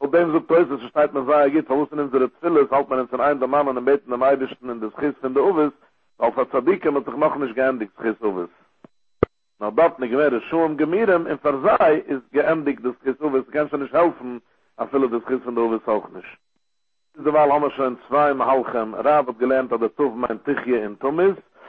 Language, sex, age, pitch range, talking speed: English, male, 60-79, 125-150 Hz, 145 wpm